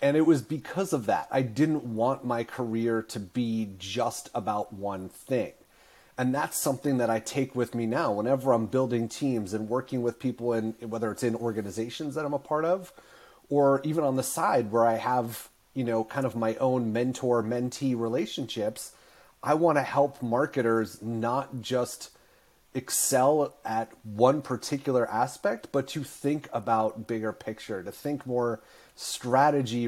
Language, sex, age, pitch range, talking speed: English, male, 30-49, 115-140 Hz, 165 wpm